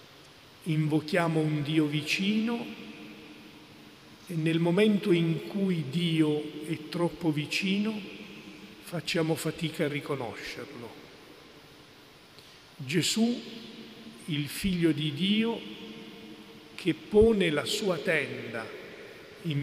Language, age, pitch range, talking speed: Italian, 50-69, 155-200 Hz, 85 wpm